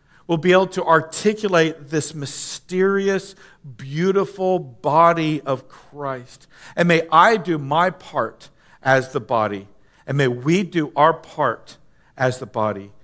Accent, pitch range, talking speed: American, 115-170 Hz, 135 wpm